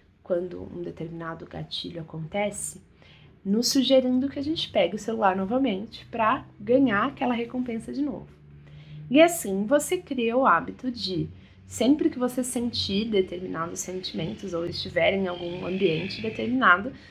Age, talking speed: 20-39, 135 wpm